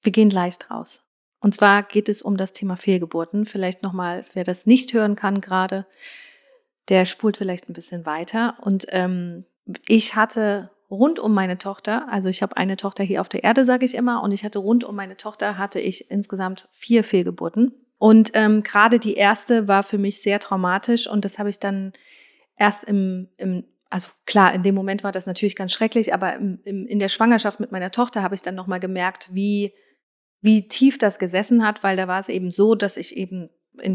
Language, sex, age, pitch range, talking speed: German, female, 30-49, 190-220 Hz, 200 wpm